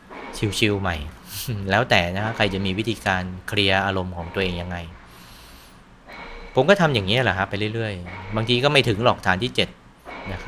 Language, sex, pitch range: Thai, male, 95-115 Hz